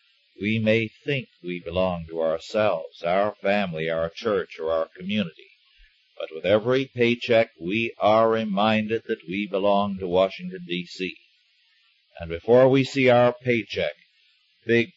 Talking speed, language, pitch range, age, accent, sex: 135 wpm, English, 95-160 Hz, 50-69, American, male